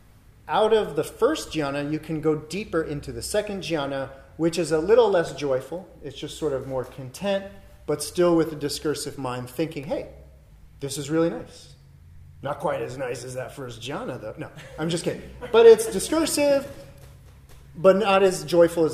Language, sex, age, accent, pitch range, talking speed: English, male, 30-49, American, 130-180 Hz, 185 wpm